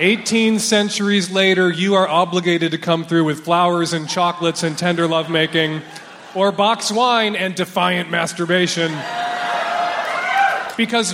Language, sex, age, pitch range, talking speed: English, male, 30-49, 170-230 Hz, 125 wpm